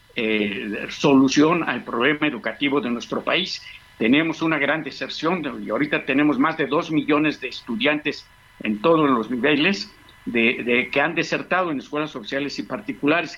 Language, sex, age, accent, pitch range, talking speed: Spanish, male, 50-69, Mexican, 135-165 Hz, 160 wpm